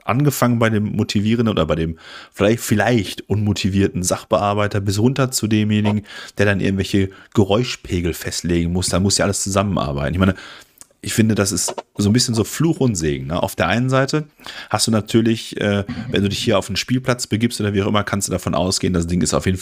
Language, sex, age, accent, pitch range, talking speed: German, male, 30-49, German, 90-110 Hz, 210 wpm